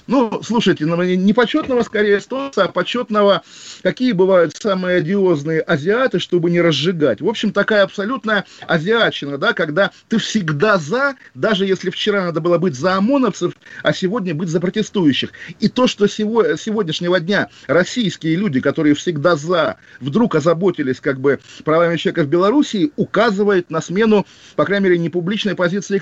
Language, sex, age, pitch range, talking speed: Russian, male, 40-59, 155-205 Hz, 155 wpm